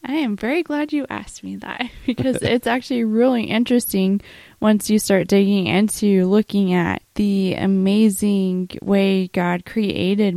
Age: 20-39